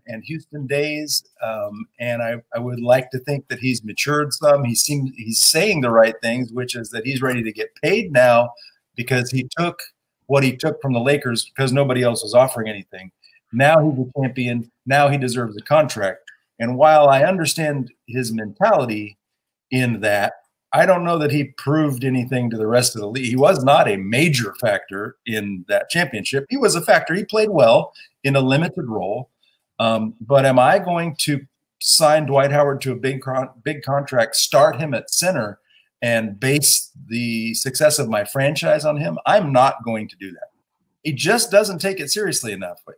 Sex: male